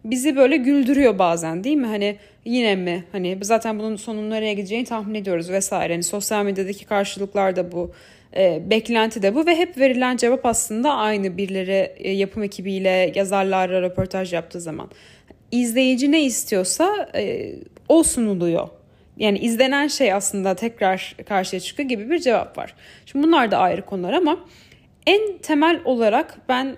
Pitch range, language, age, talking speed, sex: 190-260 Hz, Turkish, 20-39, 150 wpm, female